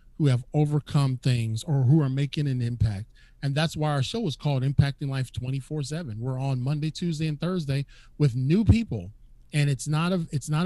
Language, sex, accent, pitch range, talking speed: English, male, American, 140-195 Hz, 195 wpm